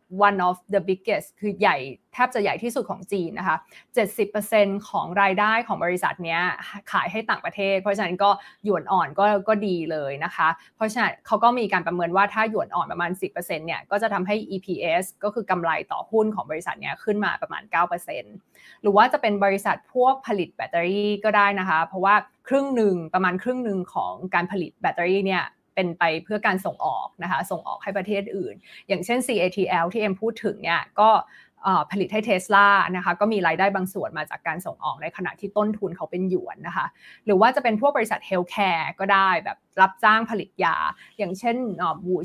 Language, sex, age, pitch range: Thai, female, 20-39, 180-215 Hz